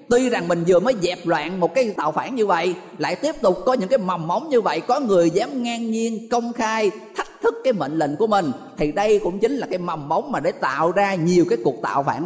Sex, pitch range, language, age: male, 165-235 Hz, Thai, 20-39